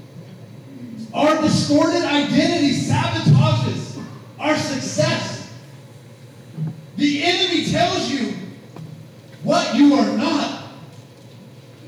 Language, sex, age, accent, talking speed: English, male, 30-49, American, 70 wpm